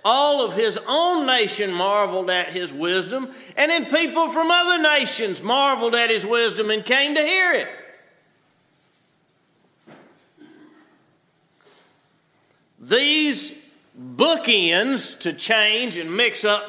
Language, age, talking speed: English, 50-69, 110 wpm